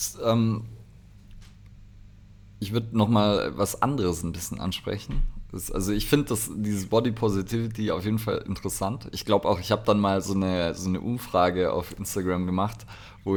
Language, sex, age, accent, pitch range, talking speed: German, male, 30-49, German, 95-110 Hz, 155 wpm